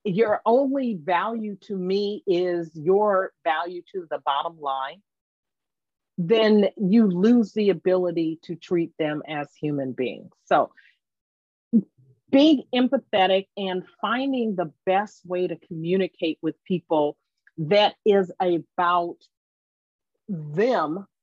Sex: female